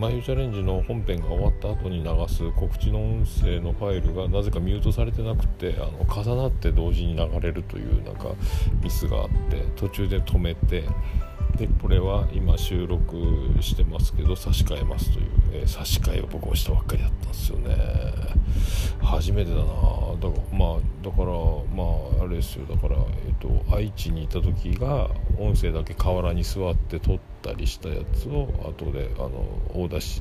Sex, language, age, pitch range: male, Japanese, 40-59, 80-95 Hz